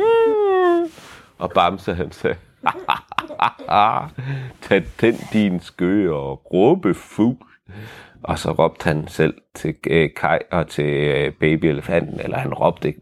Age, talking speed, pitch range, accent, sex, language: 30-49, 115 wpm, 80-105 Hz, native, male, Danish